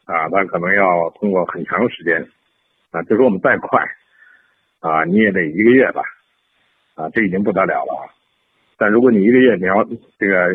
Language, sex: Chinese, male